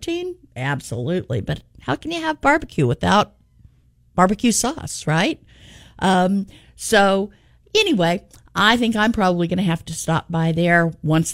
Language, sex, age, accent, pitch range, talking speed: English, female, 50-69, American, 165-255 Hz, 140 wpm